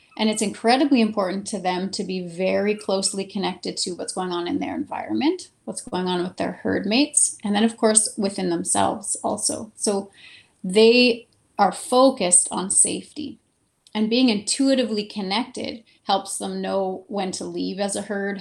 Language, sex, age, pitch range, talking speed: English, female, 30-49, 195-245 Hz, 165 wpm